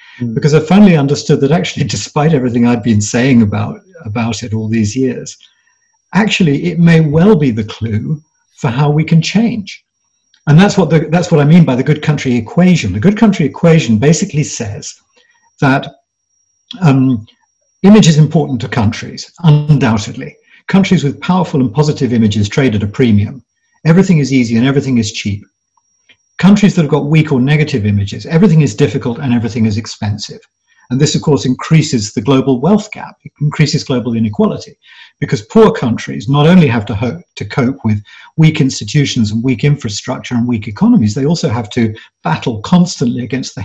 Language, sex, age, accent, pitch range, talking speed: English, male, 50-69, British, 120-165 Hz, 175 wpm